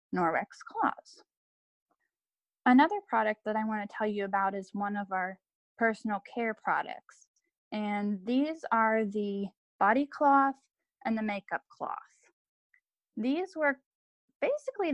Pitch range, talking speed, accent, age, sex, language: 200-255 Hz, 125 wpm, American, 10-29, female, English